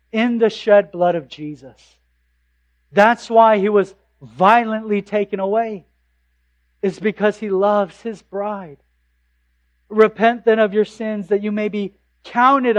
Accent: American